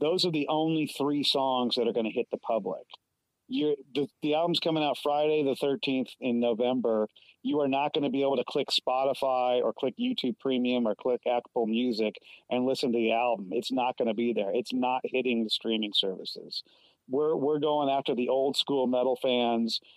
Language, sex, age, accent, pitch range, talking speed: English, male, 40-59, American, 115-140 Hz, 205 wpm